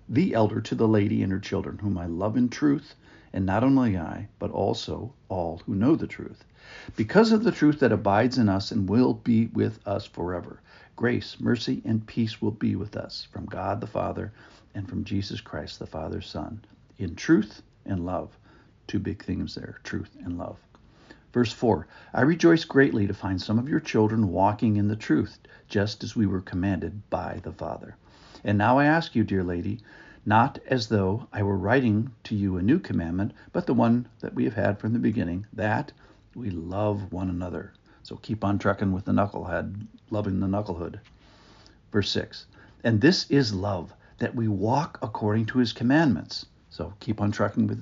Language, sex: English, male